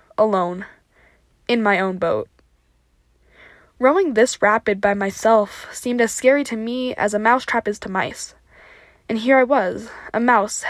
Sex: female